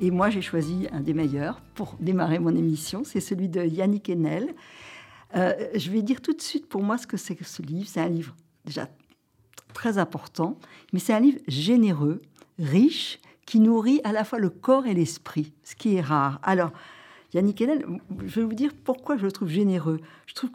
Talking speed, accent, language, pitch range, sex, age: 205 wpm, French, French, 160-225 Hz, female, 60-79